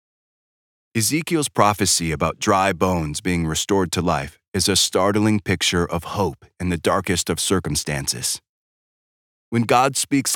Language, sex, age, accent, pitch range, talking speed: English, male, 30-49, American, 90-115 Hz, 135 wpm